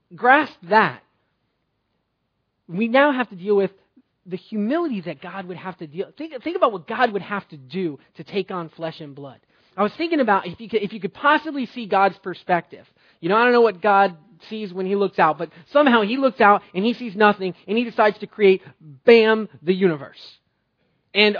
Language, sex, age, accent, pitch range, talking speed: English, male, 30-49, American, 190-255 Hz, 215 wpm